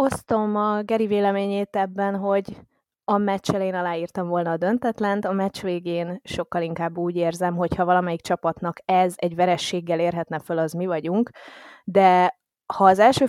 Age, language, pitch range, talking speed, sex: 20-39, Hungarian, 170-200 Hz, 165 wpm, female